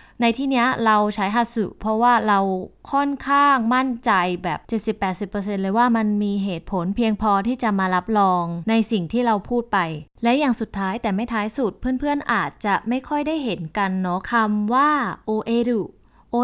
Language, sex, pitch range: Thai, female, 190-240 Hz